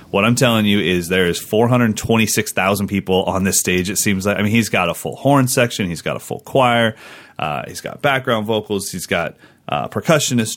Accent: American